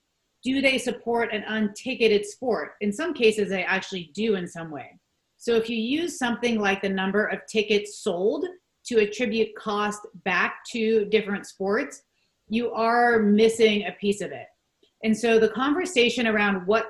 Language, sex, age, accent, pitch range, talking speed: English, female, 30-49, American, 195-230 Hz, 165 wpm